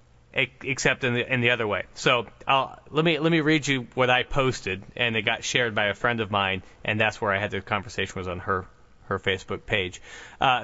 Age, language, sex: 30-49, English, male